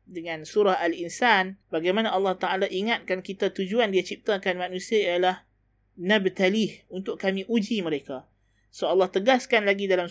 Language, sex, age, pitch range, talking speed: Malay, male, 20-39, 185-225 Hz, 135 wpm